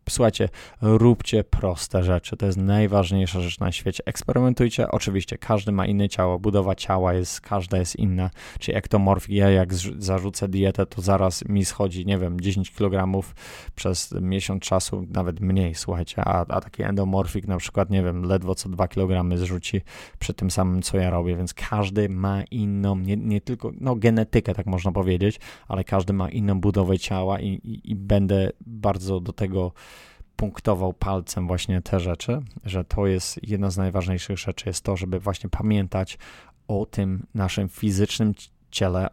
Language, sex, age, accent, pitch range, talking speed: Polish, male, 20-39, native, 95-105 Hz, 165 wpm